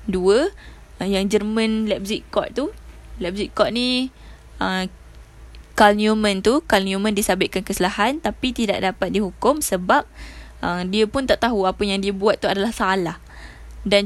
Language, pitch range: Malay, 185-215 Hz